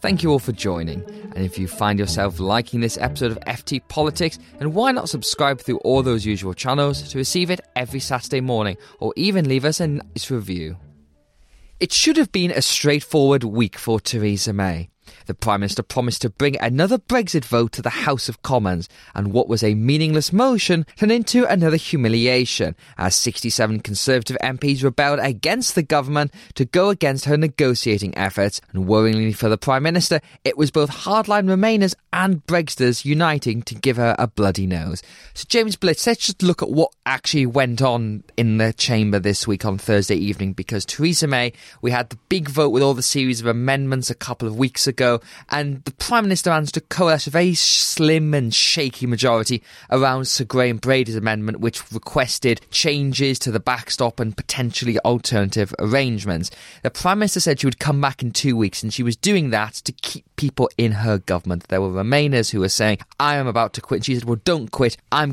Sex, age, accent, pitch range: male, 20-39, British, 110-150 Hz